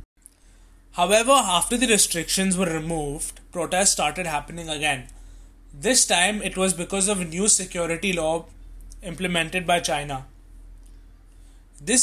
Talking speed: 120 wpm